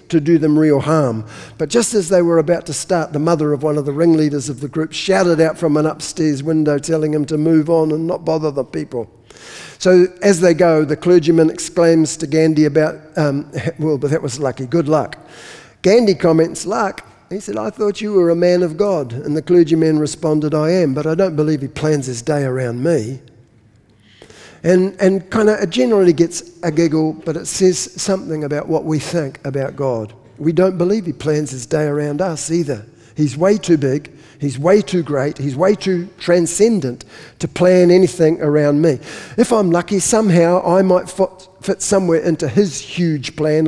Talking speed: 195 wpm